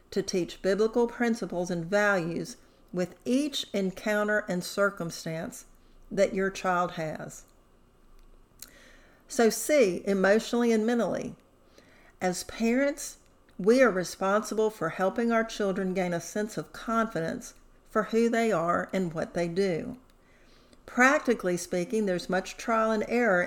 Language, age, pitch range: English, 50-69, 185-230 Hz